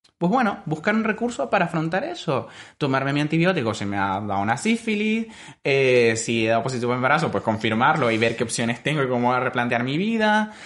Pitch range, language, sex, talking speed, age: 115-165 Hz, Spanish, male, 215 wpm, 20-39